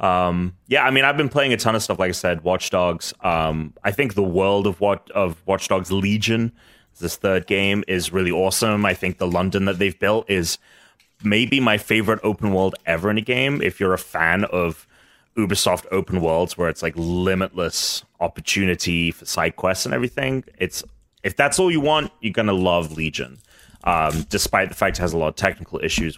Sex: male